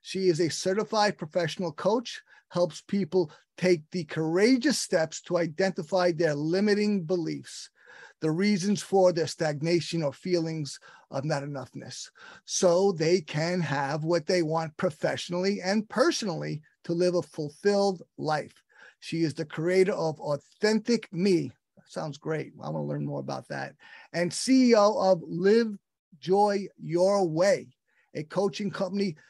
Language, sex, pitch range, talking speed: English, male, 160-195 Hz, 140 wpm